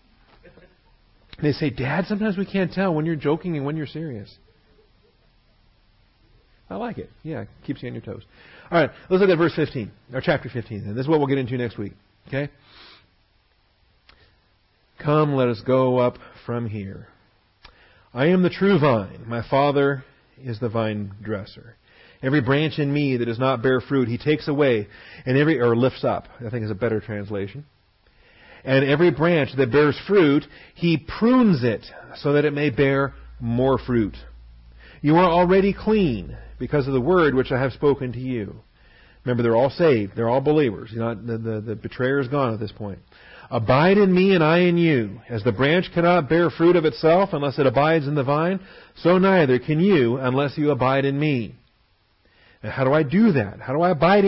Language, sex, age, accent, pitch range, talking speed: English, male, 40-59, American, 115-160 Hz, 190 wpm